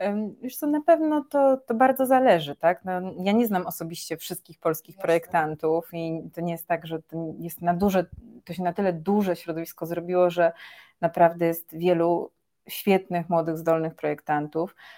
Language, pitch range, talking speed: Polish, 170-195 Hz, 170 wpm